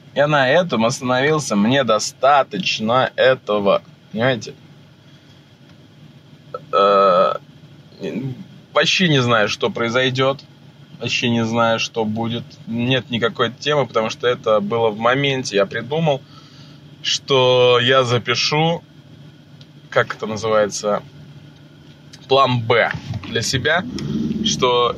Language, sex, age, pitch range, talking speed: Russian, male, 20-39, 110-145 Hz, 100 wpm